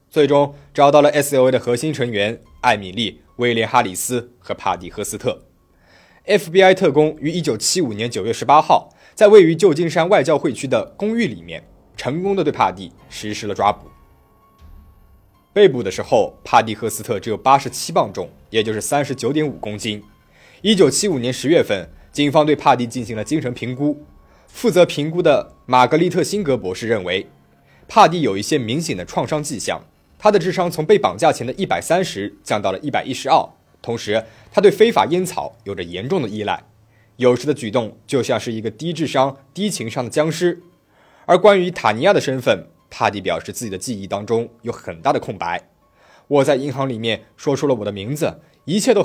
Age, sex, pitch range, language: 20-39, male, 110-155 Hz, Chinese